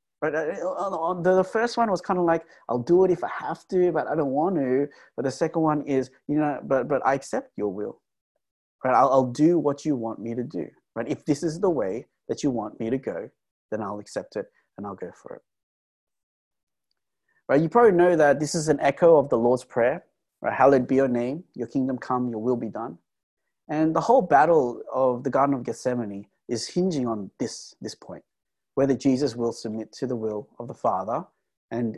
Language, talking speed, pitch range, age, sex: English, 220 wpm, 120-155 Hz, 30-49, male